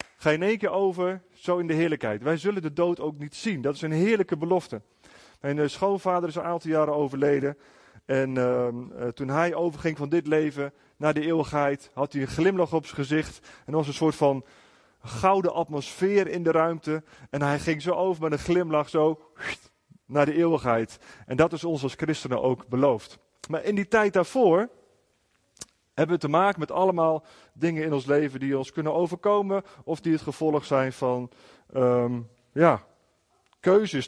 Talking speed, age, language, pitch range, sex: 185 wpm, 30-49, Dutch, 140-175 Hz, male